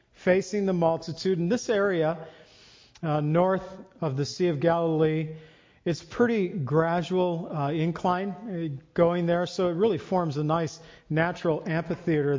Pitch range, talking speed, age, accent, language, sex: 155-185 Hz, 135 wpm, 50-69, American, English, male